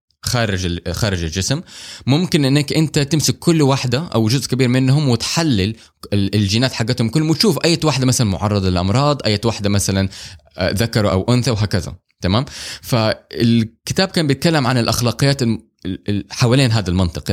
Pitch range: 100-135 Hz